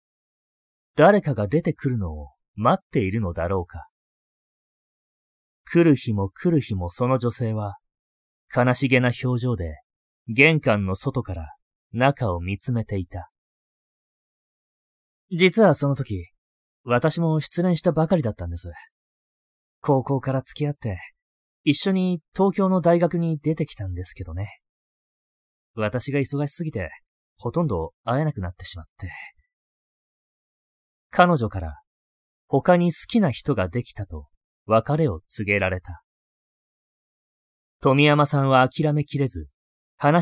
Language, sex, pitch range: Japanese, male, 90-150 Hz